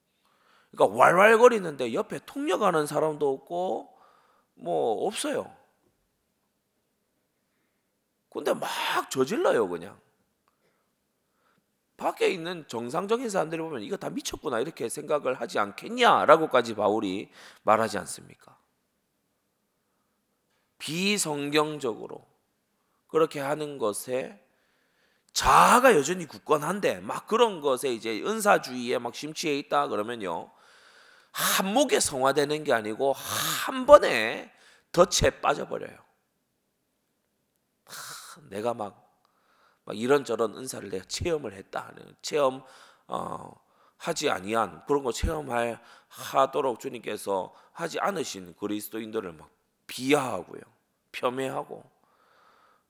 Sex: male